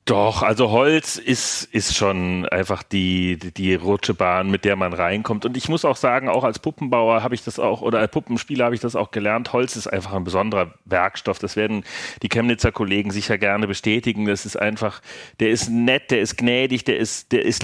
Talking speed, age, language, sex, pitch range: 210 wpm, 30-49, German, male, 105-120 Hz